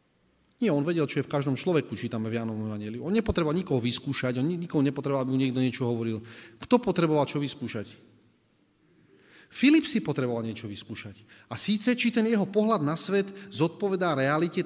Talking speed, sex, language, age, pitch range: 170 wpm, male, Slovak, 30-49, 125-175 Hz